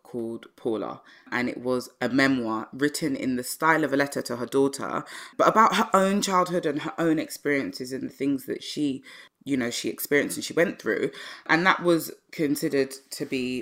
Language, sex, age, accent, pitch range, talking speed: English, female, 20-39, British, 125-155 Hz, 200 wpm